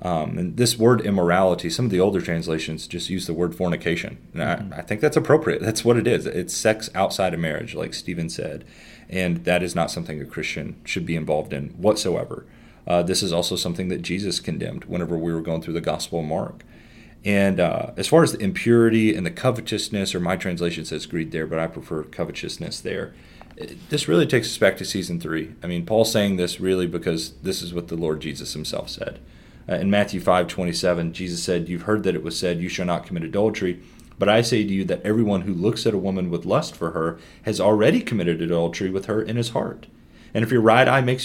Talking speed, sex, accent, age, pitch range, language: 225 wpm, male, American, 30-49, 85-110 Hz, English